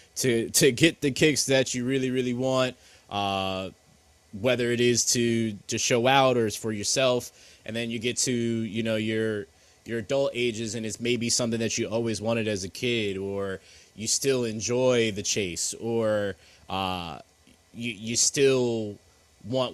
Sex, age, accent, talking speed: male, 20-39, American, 170 wpm